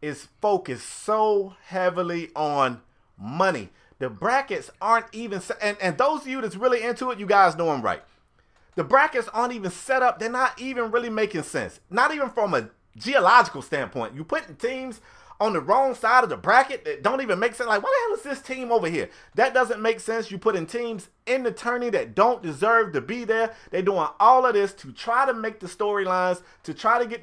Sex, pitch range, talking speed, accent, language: male, 180-230 Hz, 220 wpm, American, English